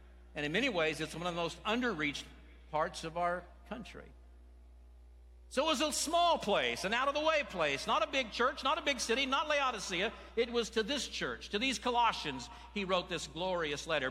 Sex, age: male, 60-79